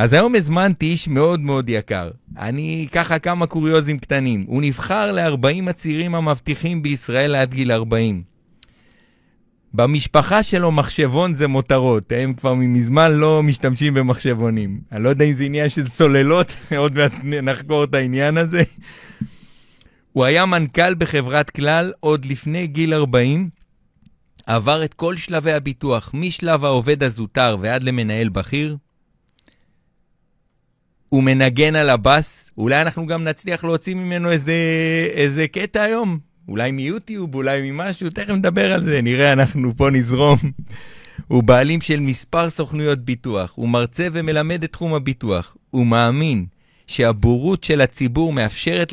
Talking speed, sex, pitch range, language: 135 wpm, male, 130-165 Hz, Hebrew